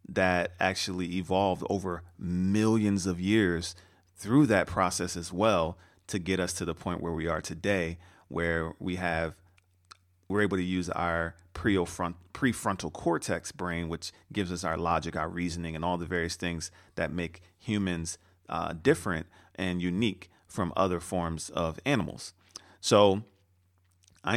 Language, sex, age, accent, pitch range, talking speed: English, male, 40-59, American, 90-100 Hz, 145 wpm